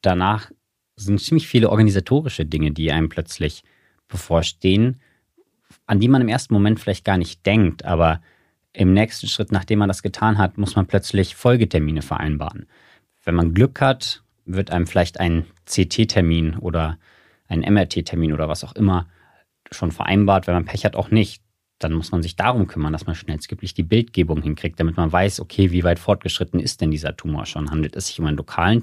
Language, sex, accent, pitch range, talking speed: German, male, German, 80-105 Hz, 185 wpm